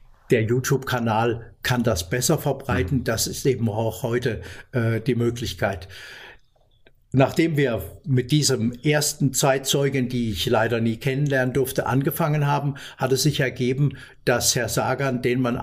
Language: German